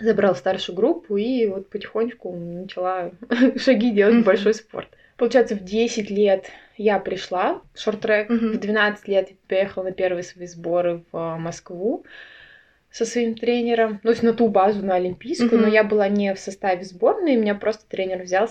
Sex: female